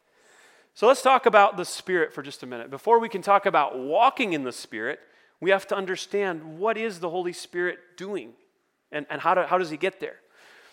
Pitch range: 170-215 Hz